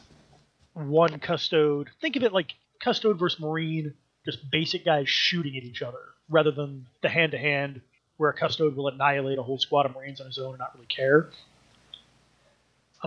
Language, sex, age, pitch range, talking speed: English, male, 30-49, 140-175 Hz, 175 wpm